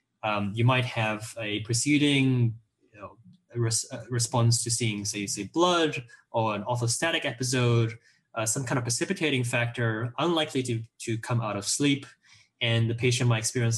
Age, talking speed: 10-29, 165 wpm